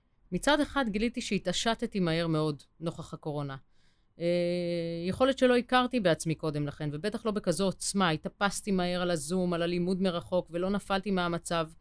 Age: 30-49